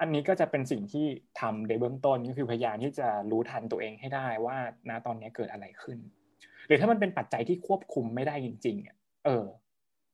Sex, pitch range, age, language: male, 115-145 Hz, 20-39, Thai